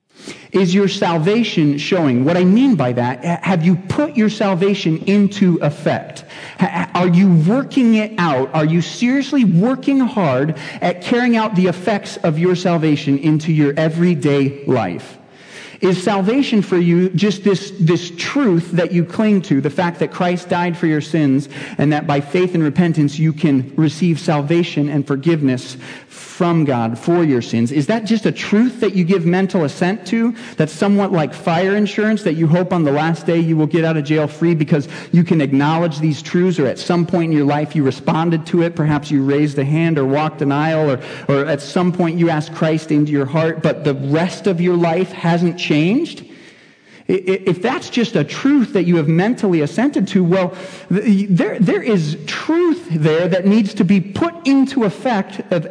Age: 40-59